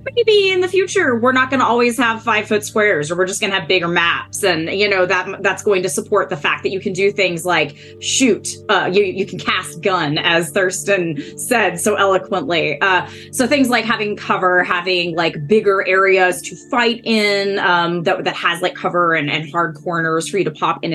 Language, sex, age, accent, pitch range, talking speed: English, female, 20-39, American, 175-220 Hz, 220 wpm